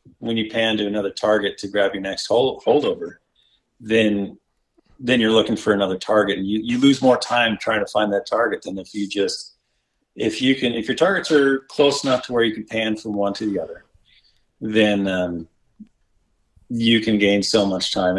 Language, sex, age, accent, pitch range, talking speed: English, male, 40-59, American, 100-120 Hz, 200 wpm